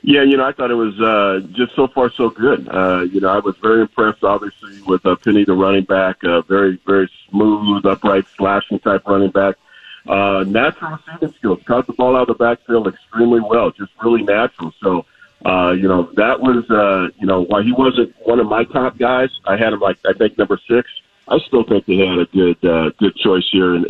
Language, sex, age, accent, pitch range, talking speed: English, male, 50-69, American, 95-115 Hz, 225 wpm